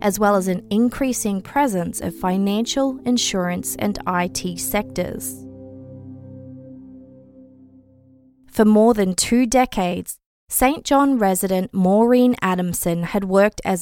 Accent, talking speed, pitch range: Australian, 110 wpm, 180-235 Hz